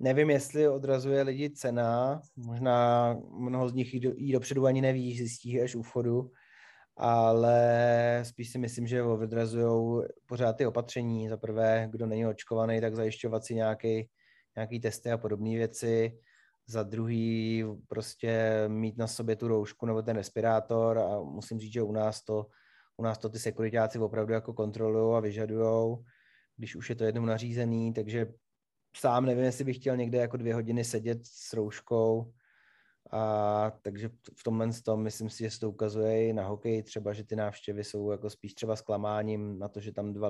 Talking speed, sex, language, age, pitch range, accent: 170 wpm, male, Czech, 20-39, 110-120 Hz, native